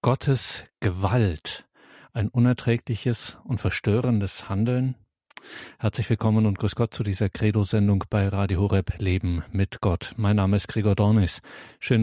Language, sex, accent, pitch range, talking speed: German, male, German, 100-115 Hz, 135 wpm